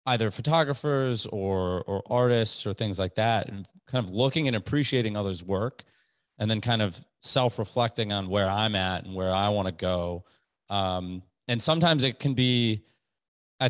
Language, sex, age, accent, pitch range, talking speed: English, male, 30-49, American, 100-120 Hz, 170 wpm